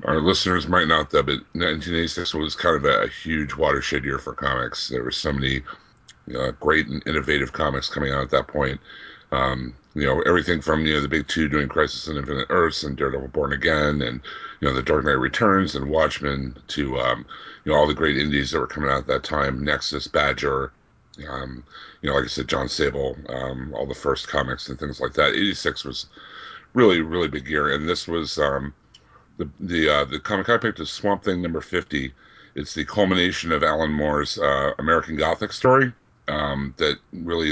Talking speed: 205 wpm